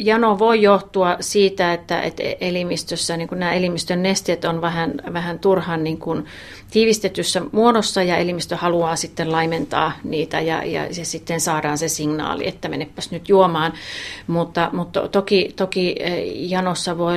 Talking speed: 145 wpm